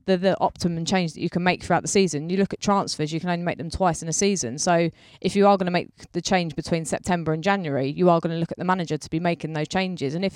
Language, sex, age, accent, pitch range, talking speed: English, female, 20-39, British, 155-180 Hz, 300 wpm